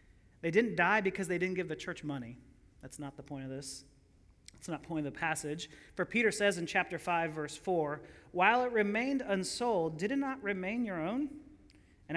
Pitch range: 155-240 Hz